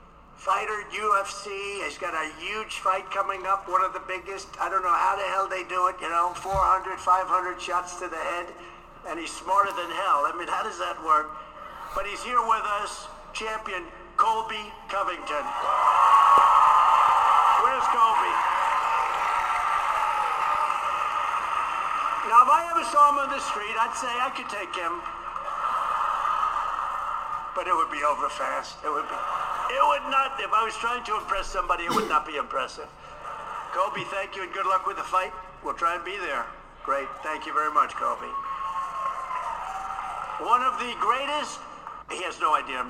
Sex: male